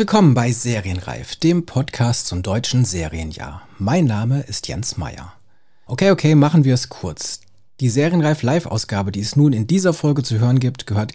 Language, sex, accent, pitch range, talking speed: German, male, German, 110-140 Hz, 170 wpm